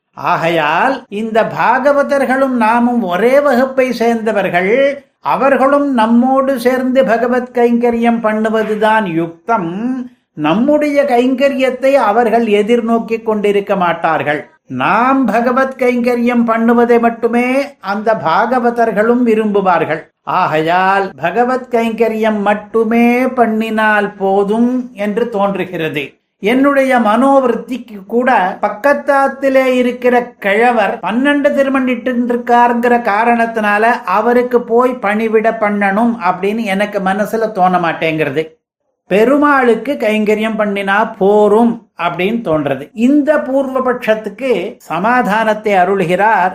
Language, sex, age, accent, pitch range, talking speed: Tamil, male, 50-69, native, 205-250 Hz, 75 wpm